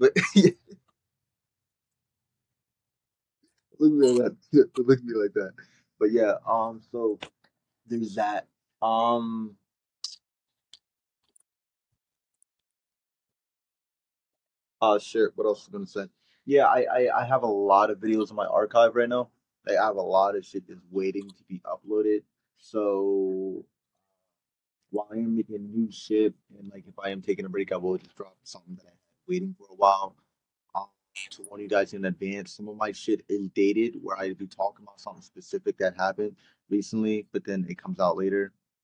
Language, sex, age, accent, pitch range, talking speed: English, male, 20-39, American, 100-120 Hz, 165 wpm